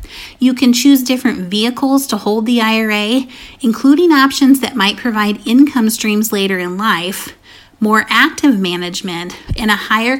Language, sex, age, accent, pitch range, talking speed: English, female, 30-49, American, 200-260 Hz, 145 wpm